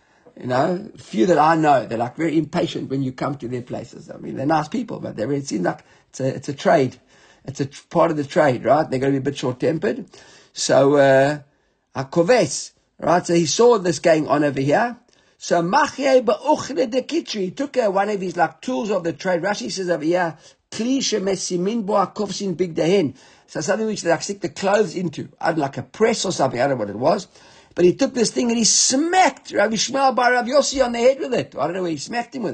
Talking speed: 210 wpm